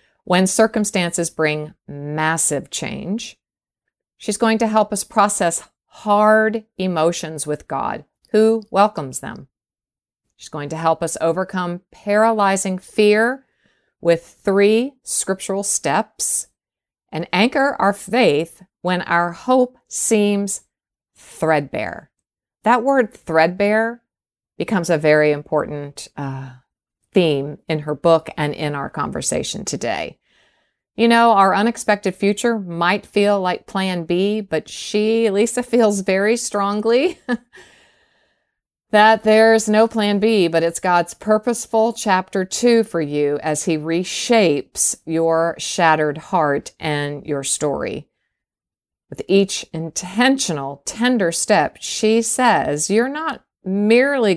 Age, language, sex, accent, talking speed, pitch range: 50-69, English, female, American, 115 wpm, 160-220 Hz